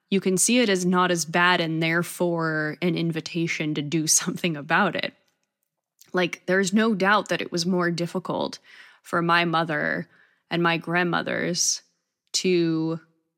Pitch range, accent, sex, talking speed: 160-185 Hz, American, female, 150 wpm